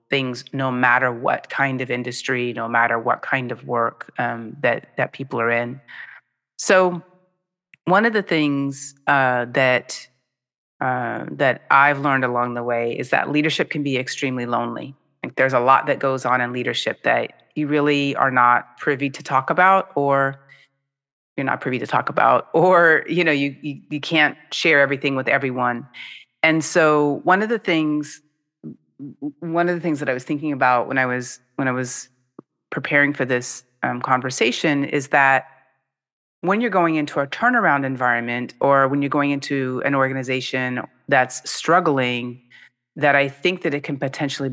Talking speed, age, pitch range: 170 wpm, 30-49, 125-150 Hz